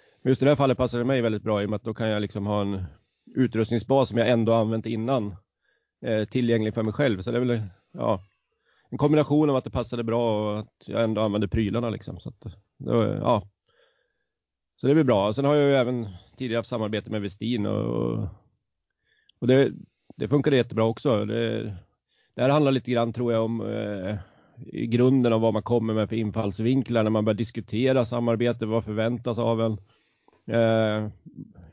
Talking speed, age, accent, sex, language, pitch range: 195 wpm, 30-49, native, male, Swedish, 110-125 Hz